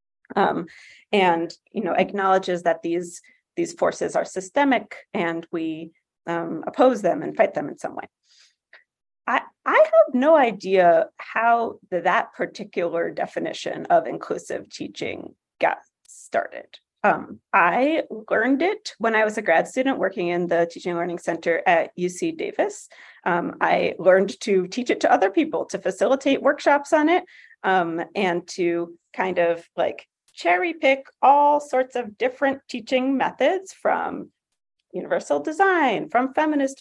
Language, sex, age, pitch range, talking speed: English, female, 30-49, 185-310 Hz, 145 wpm